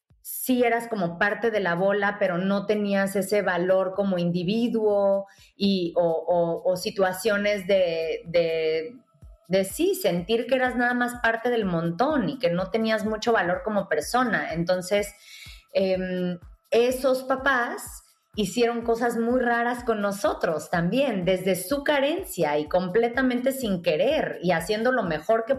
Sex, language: female, Spanish